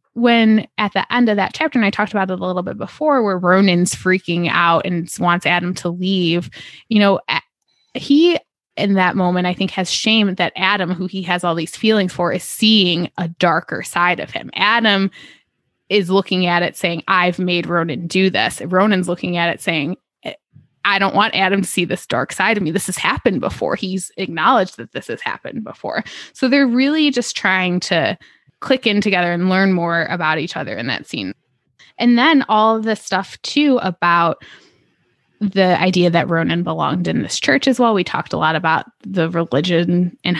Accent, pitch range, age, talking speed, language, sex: American, 170-200 Hz, 20-39, 200 wpm, English, female